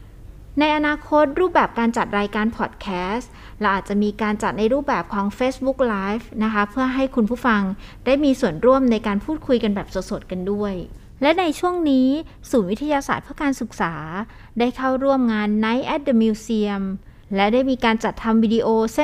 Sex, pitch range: female, 200-260 Hz